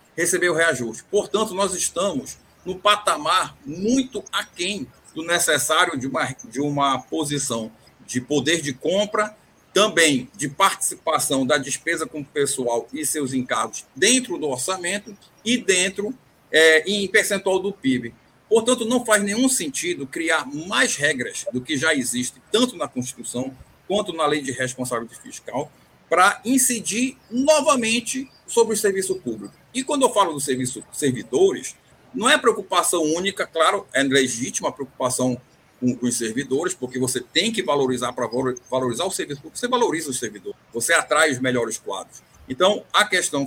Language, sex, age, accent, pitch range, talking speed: Portuguese, male, 50-69, Brazilian, 135-215 Hz, 150 wpm